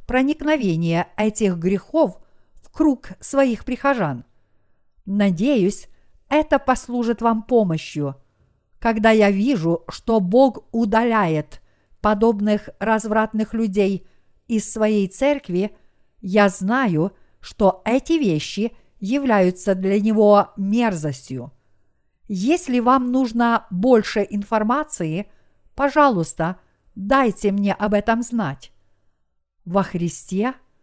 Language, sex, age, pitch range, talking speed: Russian, female, 50-69, 180-255 Hz, 90 wpm